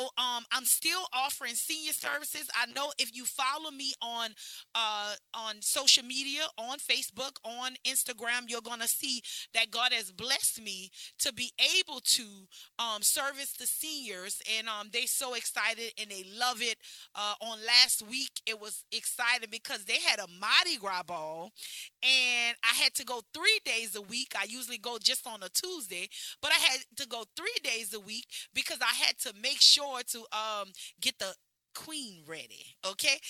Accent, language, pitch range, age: American, English, 225-280 Hz, 30-49